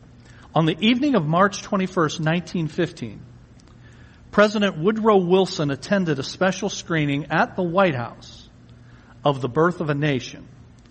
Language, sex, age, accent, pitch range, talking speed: English, male, 50-69, American, 135-190 Hz, 130 wpm